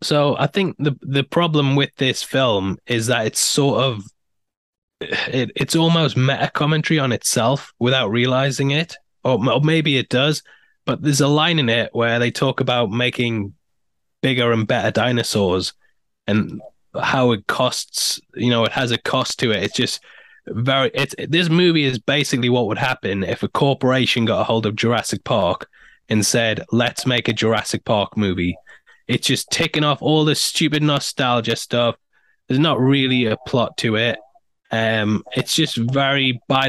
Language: English